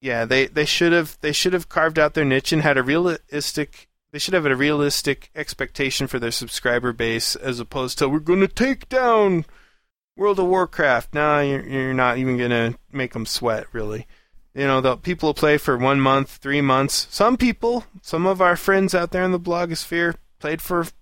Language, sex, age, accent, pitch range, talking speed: English, male, 20-39, American, 130-175 Hz, 210 wpm